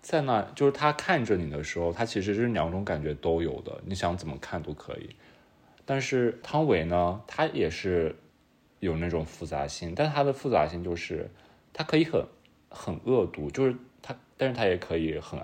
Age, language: 20-39, Chinese